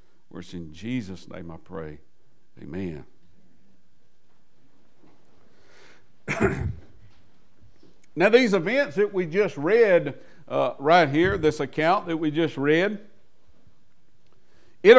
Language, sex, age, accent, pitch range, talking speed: English, male, 60-79, American, 140-185 Hz, 95 wpm